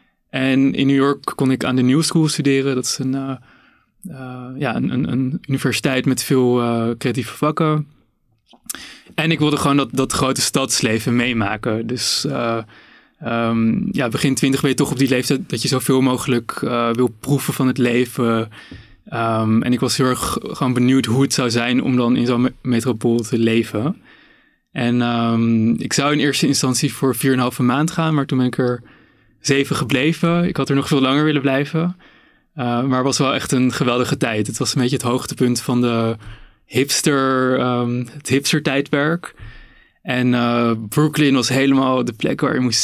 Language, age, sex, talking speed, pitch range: Dutch, 20-39, male, 190 wpm, 120-140 Hz